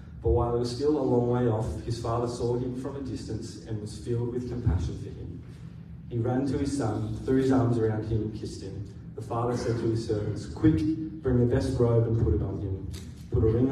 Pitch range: 105-125 Hz